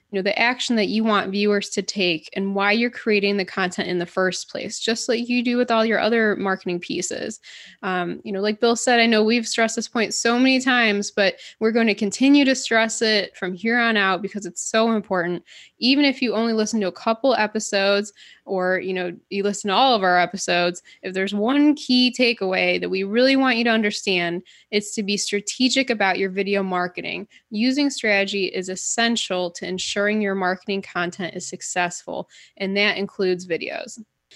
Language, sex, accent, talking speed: English, female, American, 200 wpm